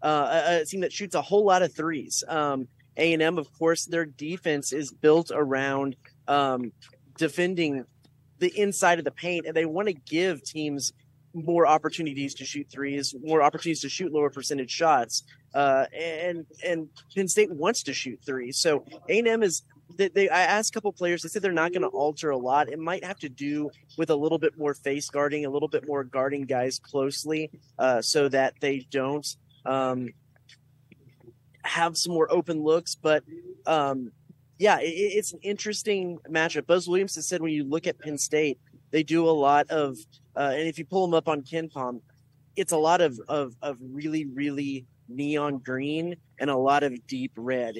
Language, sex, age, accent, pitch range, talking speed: English, male, 30-49, American, 135-165 Hz, 190 wpm